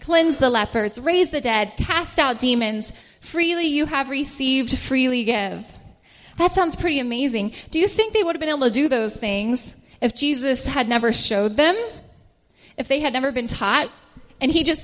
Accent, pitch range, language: American, 230-320 Hz, English